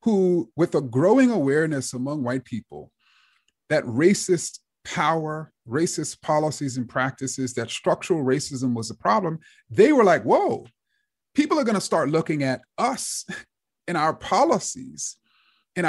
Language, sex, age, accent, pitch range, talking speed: English, male, 30-49, American, 155-240 Hz, 135 wpm